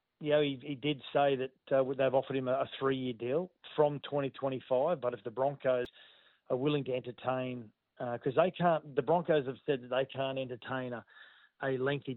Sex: male